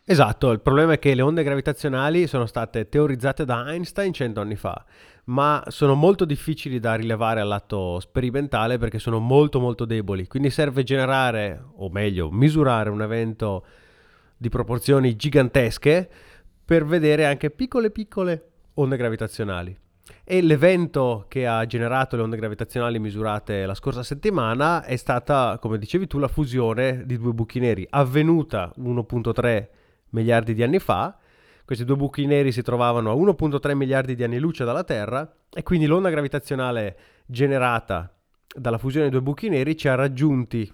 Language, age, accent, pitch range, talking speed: Italian, 30-49, native, 115-145 Hz, 155 wpm